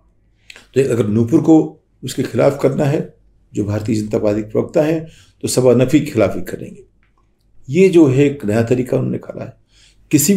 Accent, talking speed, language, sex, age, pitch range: native, 180 wpm, Hindi, male, 50-69, 105-130 Hz